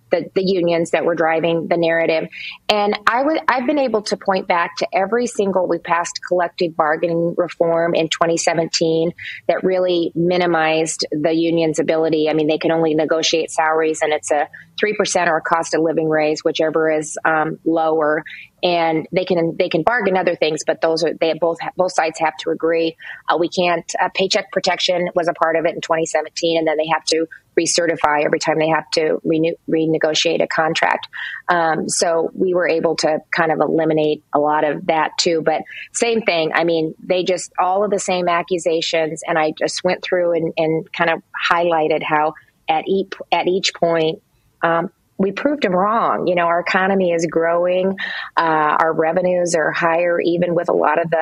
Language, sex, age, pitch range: English, female, 30-49, 160-180 Hz